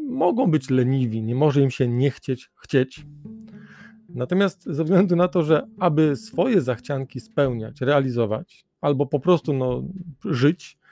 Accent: native